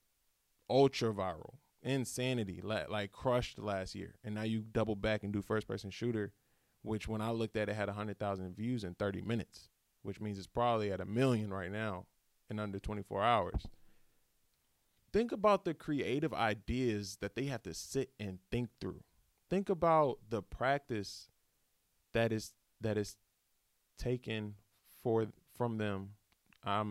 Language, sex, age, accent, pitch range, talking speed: English, male, 20-39, American, 105-145 Hz, 150 wpm